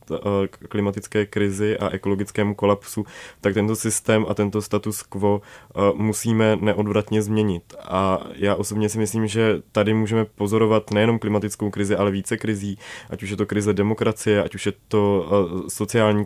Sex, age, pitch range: male, 20-39, 100-110 Hz